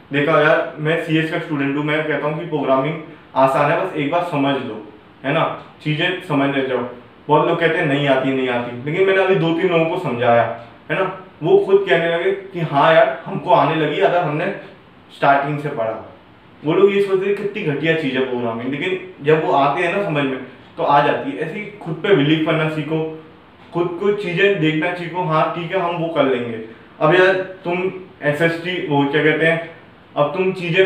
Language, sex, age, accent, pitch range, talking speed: Hindi, male, 20-39, native, 135-170 Hz, 210 wpm